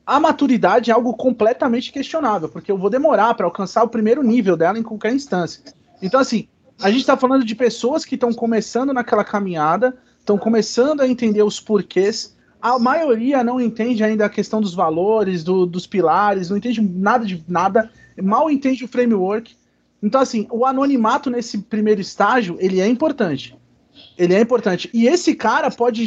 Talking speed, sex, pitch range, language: 175 wpm, male, 205-260 Hz, Portuguese